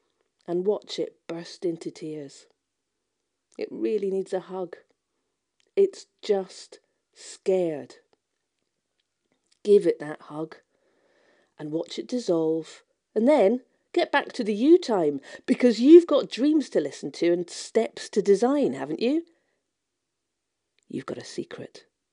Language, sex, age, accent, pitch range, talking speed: English, female, 40-59, British, 170-285 Hz, 125 wpm